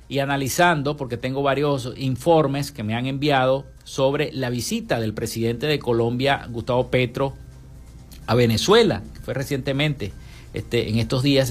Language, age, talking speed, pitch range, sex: Spanish, 50-69, 145 wpm, 120-160 Hz, male